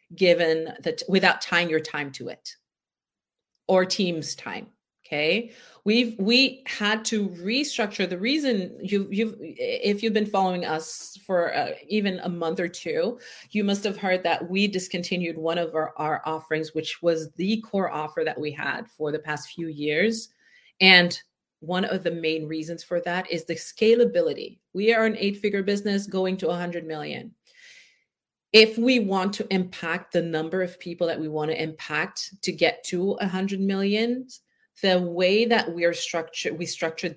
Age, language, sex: 40-59, English, female